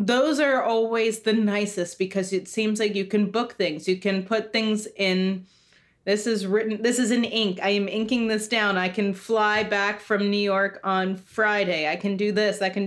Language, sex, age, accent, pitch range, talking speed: English, female, 20-39, American, 185-220 Hz, 210 wpm